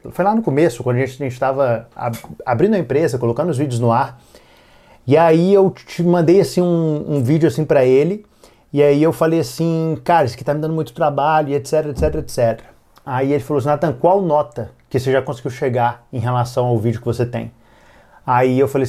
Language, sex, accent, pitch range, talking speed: Portuguese, male, Brazilian, 125-160 Hz, 215 wpm